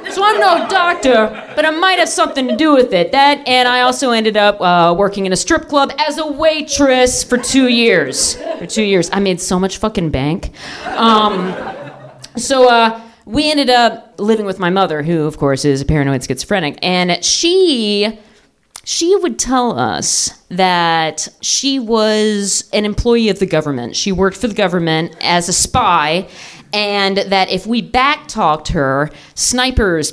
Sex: female